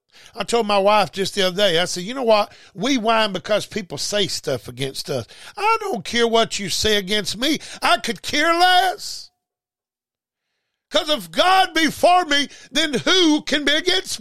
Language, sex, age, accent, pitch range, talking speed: English, male, 50-69, American, 220-295 Hz, 185 wpm